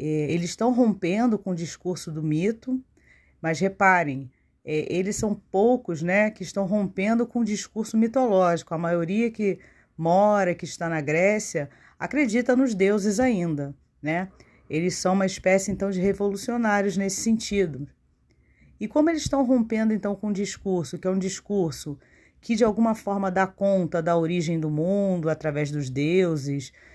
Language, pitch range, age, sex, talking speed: Portuguese, 155-205 Hz, 40-59, female, 150 wpm